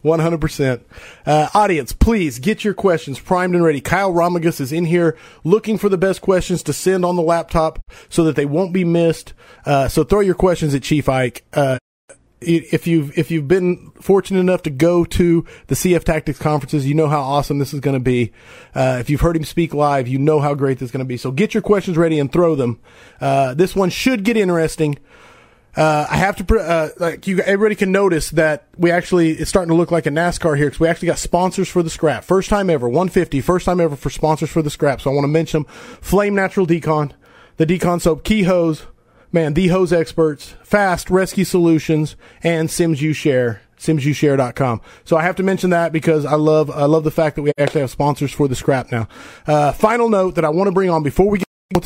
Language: English